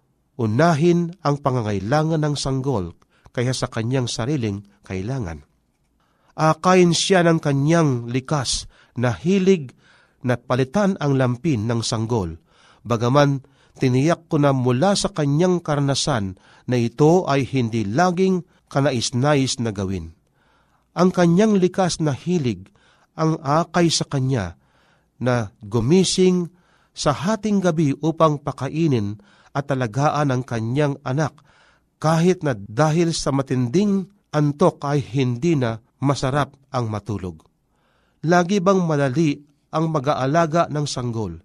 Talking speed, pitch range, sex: 115 wpm, 120-165 Hz, male